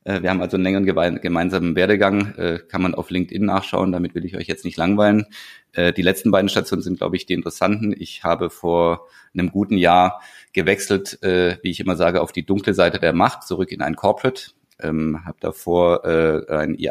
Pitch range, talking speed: 90-105 Hz, 185 wpm